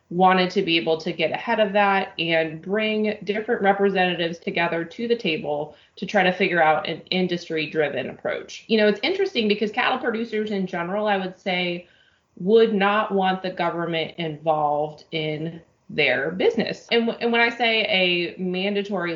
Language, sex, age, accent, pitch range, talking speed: English, female, 20-39, American, 160-200 Hz, 170 wpm